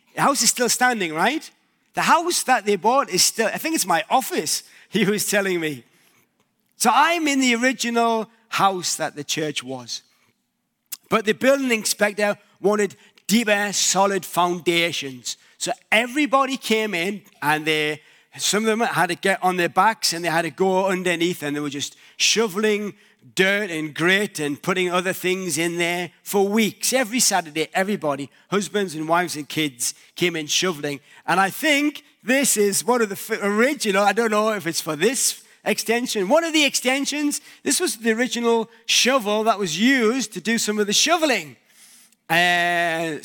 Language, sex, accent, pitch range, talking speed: English, male, British, 170-235 Hz, 170 wpm